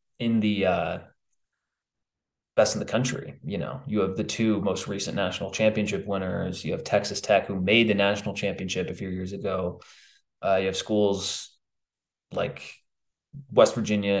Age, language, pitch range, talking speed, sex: 20-39, English, 100-130 Hz, 160 wpm, male